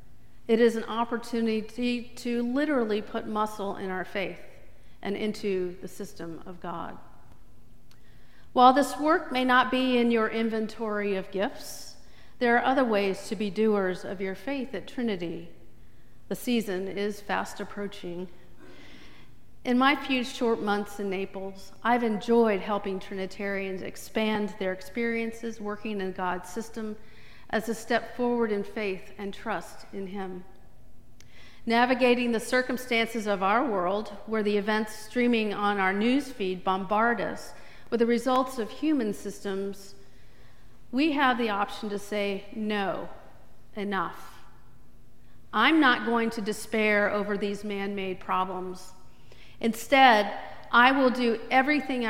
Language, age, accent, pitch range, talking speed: English, 50-69, American, 195-235 Hz, 135 wpm